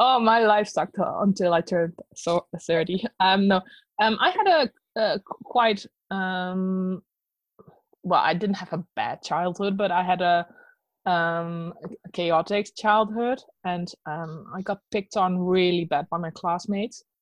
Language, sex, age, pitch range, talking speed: English, female, 20-39, 180-215 Hz, 150 wpm